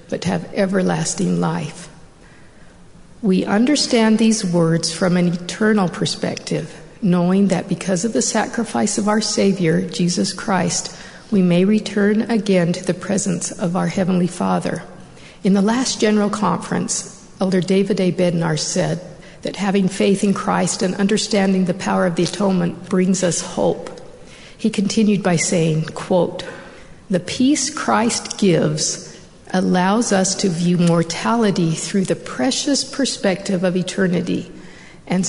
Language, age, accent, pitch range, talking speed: English, 50-69, American, 180-215 Hz, 140 wpm